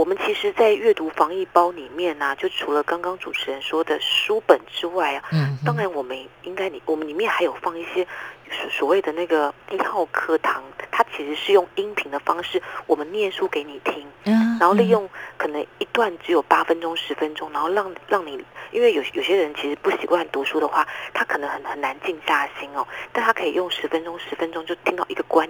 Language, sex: Chinese, female